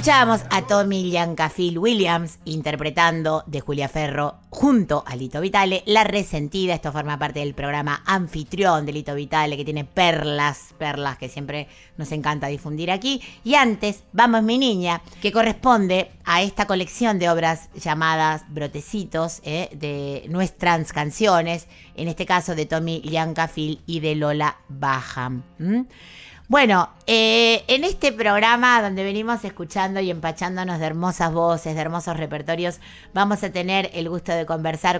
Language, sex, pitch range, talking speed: Spanish, female, 150-185 Hz, 145 wpm